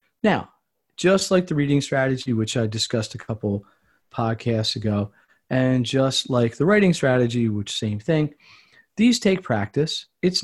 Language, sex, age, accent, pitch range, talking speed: English, male, 40-59, American, 115-145 Hz, 150 wpm